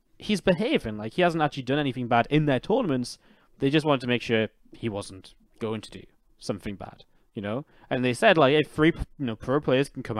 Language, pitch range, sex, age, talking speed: English, 115-155 Hz, male, 10-29, 230 wpm